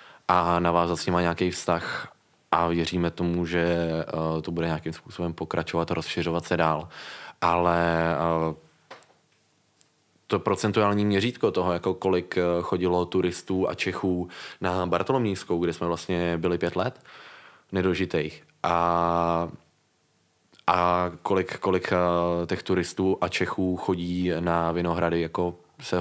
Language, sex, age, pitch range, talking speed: Czech, male, 20-39, 85-90 Hz, 130 wpm